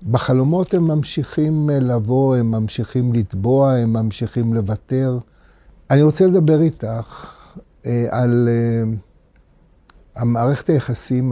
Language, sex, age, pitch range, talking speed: Hebrew, male, 60-79, 120-150 Hz, 100 wpm